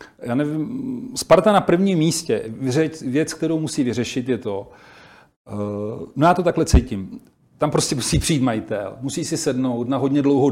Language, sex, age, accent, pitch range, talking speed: Czech, male, 40-59, native, 120-145 Hz, 165 wpm